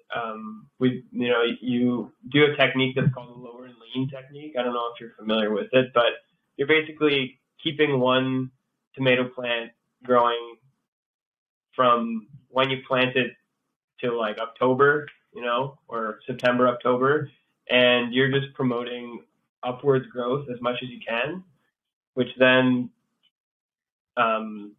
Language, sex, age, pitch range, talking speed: English, male, 20-39, 120-135 Hz, 140 wpm